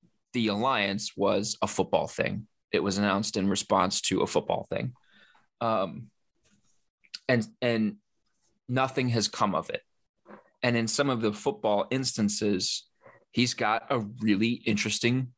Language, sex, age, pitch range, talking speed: English, male, 20-39, 110-160 Hz, 135 wpm